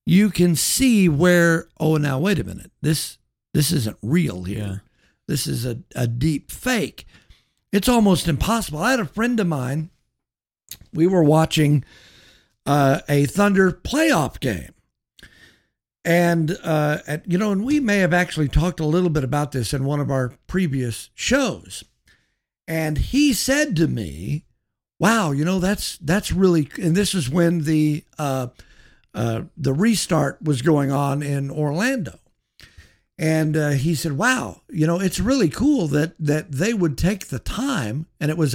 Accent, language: American, English